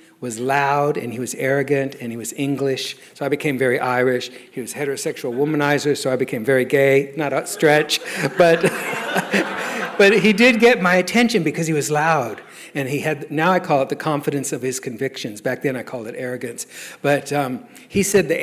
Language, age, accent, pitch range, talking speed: English, 60-79, American, 135-175 Hz, 200 wpm